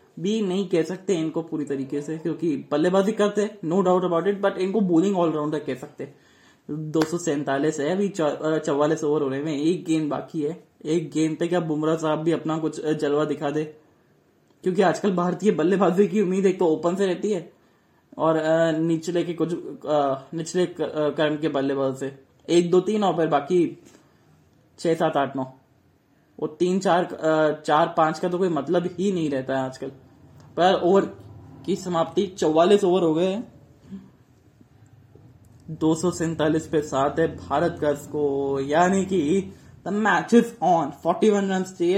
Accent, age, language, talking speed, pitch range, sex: Indian, 20-39, English, 120 wpm, 145-180 Hz, male